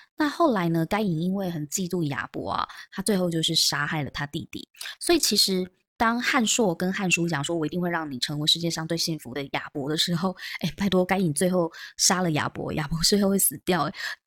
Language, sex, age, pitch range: Chinese, female, 20-39, 155-200 Hz